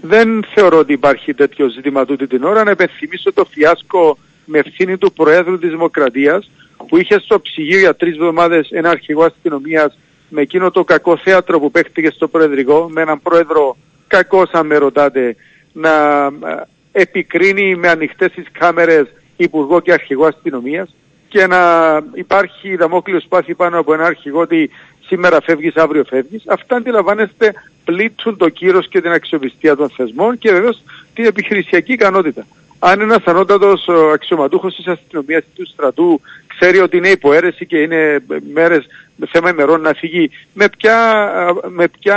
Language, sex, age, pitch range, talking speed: Greek, male, 50-69, 155-195 Hz, 150 wpm